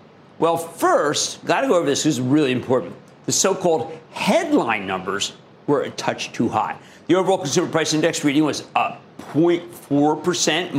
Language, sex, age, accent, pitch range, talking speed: English, male, 50-69, American, 135-195 Hz, 165 wpm